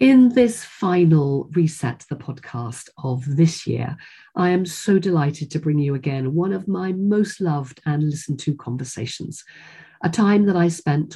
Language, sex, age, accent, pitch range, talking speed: English, female, 50-69, British, 140-170 Hz, 165 wpm